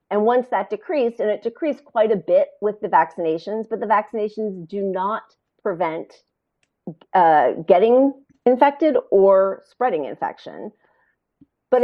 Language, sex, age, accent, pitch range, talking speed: English, female, 40-59, American, 200-265 Hz, 130 wpm